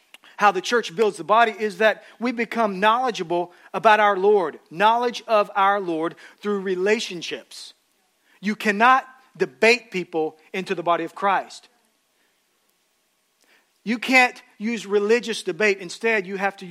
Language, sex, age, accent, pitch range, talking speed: English, male, 40-59, American, 185-225 Hz, 135 wpm